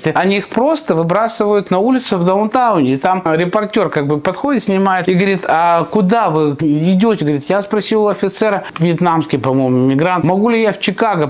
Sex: male